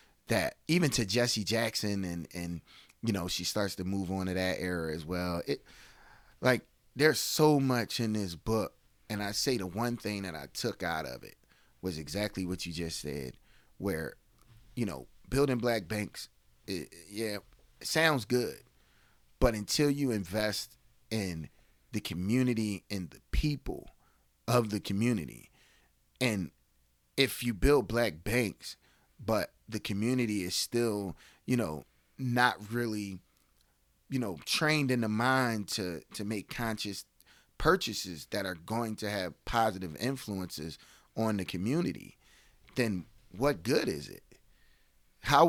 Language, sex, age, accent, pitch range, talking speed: English, male, 30-49, American, 90-120 Hz, 145 wpm